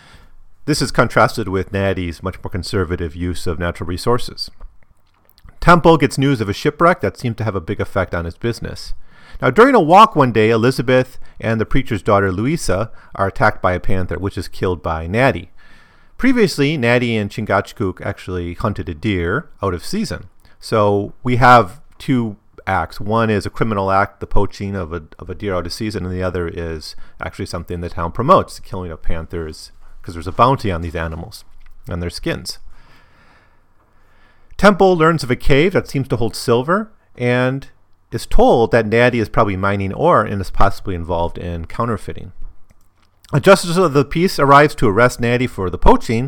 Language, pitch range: English, 90-120 Hz